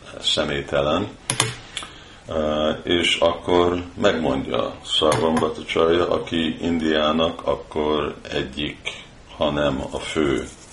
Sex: male